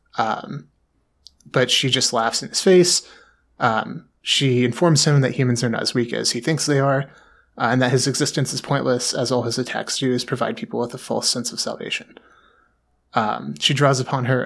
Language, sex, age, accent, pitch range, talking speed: English, male, 20-39, American, 120-140 Hz, 205 wpm